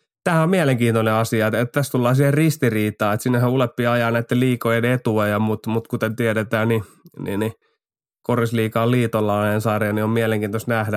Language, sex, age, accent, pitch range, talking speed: Finnish, male, 20-39, native, 110-120 Hz, 170 wpm